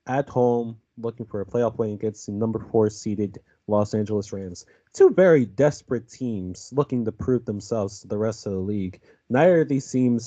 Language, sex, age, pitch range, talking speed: English, male, 30-49, 105-130 Hz, 195 wpm